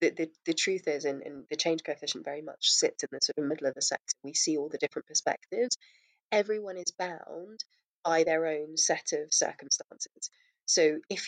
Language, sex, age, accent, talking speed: English, female, 20-39, British, 200 wpm